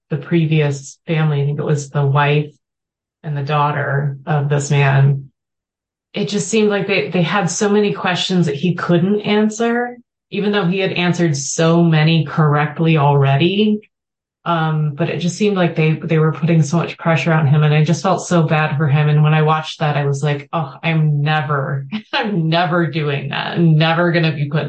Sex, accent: female, American